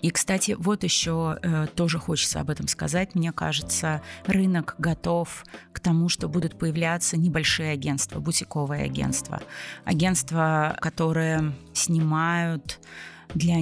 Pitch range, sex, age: 140-165 Hz, female, 30-49